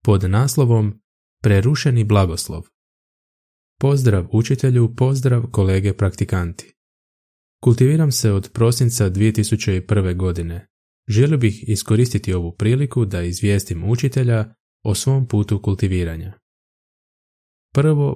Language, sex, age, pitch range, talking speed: Croatian, male, 20-39, 95-120 Hz, 95 wpm